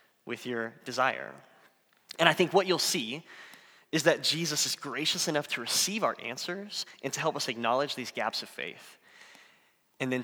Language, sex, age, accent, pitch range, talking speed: English, male, 20-39, American, 120-160 Hz, 175 wpm